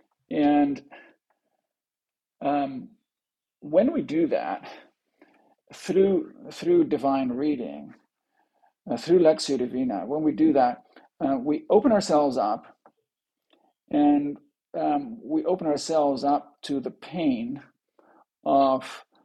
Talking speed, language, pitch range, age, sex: 105 wpm, English, 130-170 Hz, 50-69, male